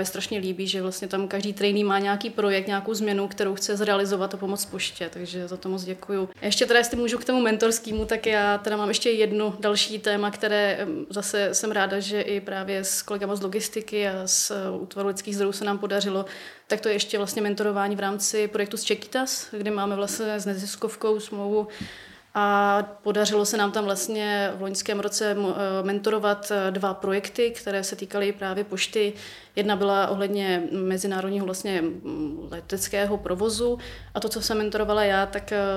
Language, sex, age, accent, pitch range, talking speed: Czech, female, 30-49, native, 195-210 Hz, 175 wpm